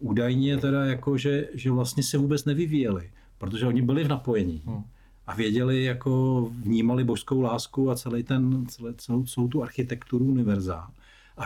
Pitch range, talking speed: 100-125 Hz, 150 wpm